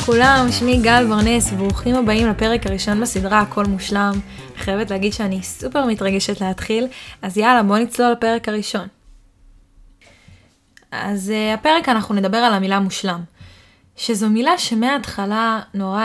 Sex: female